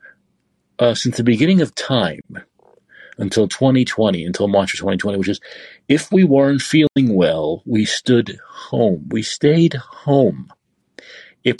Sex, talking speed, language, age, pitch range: male, 135 wpm, English, 50-69, 105-145 Hz